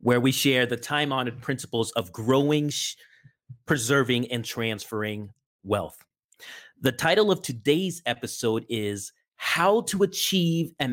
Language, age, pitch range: English, 30-49, 120-160 Hz